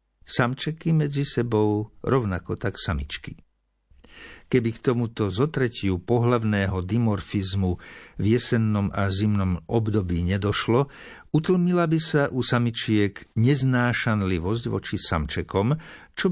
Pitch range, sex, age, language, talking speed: 100-130 Hz, male, 50-69, Slovak, 100 wpm